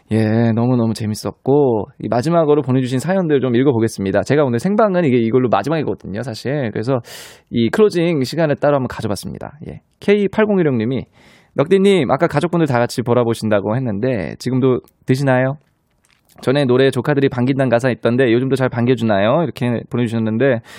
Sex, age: male, 20-39